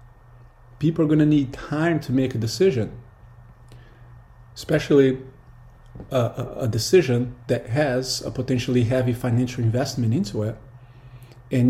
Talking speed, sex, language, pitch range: 125 wpm, male, English, 120-135 Hz